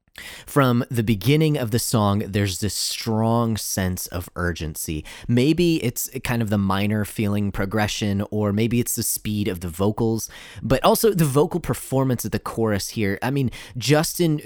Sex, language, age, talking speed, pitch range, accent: male, English, 30-49, 165 wpm, 95-130 Hz, American